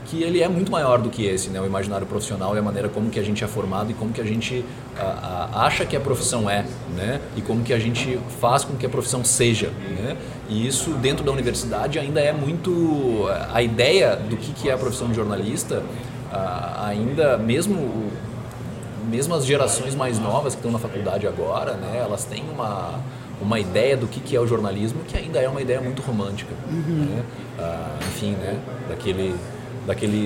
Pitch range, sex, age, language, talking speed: 110-130 Hz, male, 20-39, English, 200 wpm